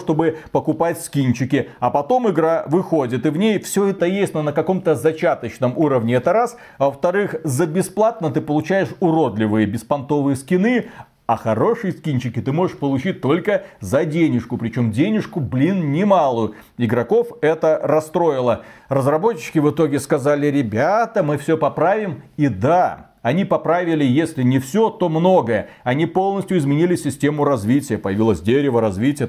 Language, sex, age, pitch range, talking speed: Russian, male, 40-59, 125-170 Hz, 140 wpm